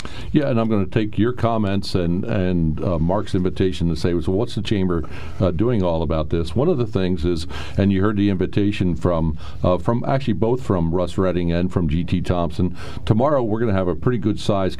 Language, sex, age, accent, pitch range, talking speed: English, male, 50-69, American, 90-110 Hz, 225 wpm